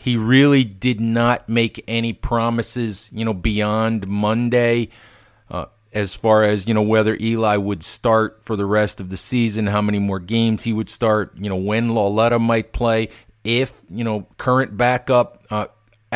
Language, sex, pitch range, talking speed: English, male, 110-125 Hz, 170 wpm